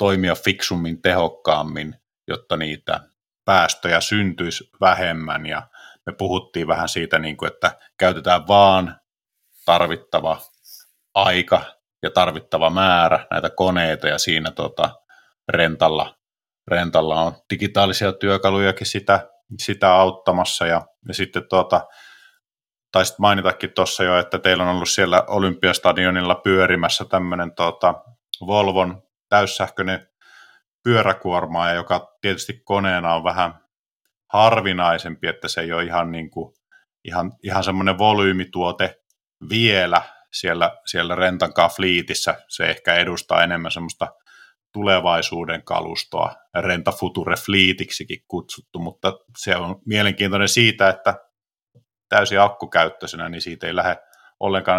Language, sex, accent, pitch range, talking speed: Finnish, male, native, 85-100 Hz, 95 wpm